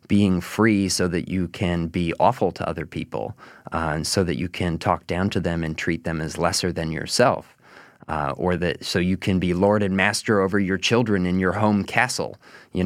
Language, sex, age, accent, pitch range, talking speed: English, male, 20-39, American, 85-105 Hz, 215 wpm